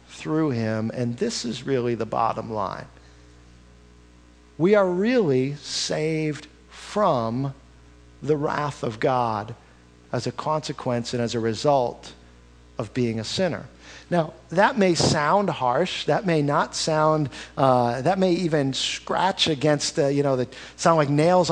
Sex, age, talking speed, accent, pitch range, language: male, 50-69, 140 wpm, American, 105-160 Hz, English